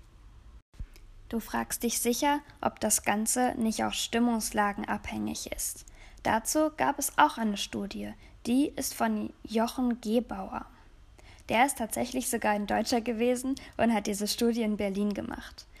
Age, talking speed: 10-29, 140 wpm